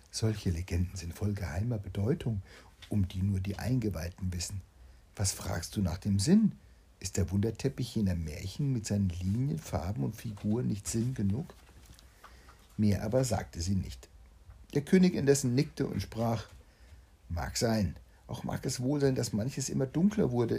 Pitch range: 90-125 Hz